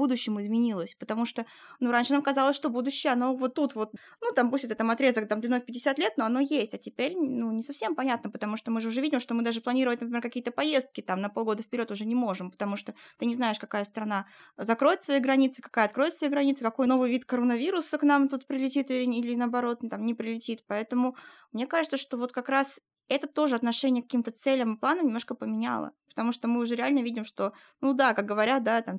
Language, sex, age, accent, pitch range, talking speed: Russian, female, 20-39, native, 225-275 Hz, 230 wpm